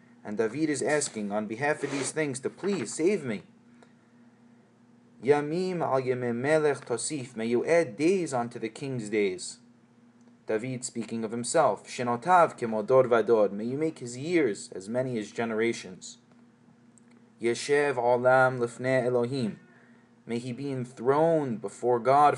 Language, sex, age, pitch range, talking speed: English, male, 30-49, 120-150 Hz, 105 wpm